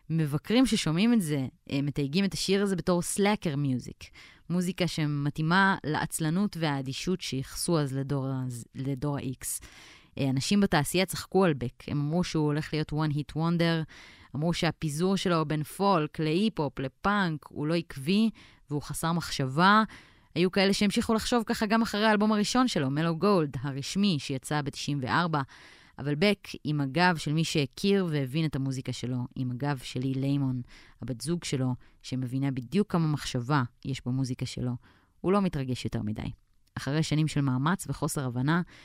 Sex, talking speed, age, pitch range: female, 150 wpm, 20-39, 125-170 Hz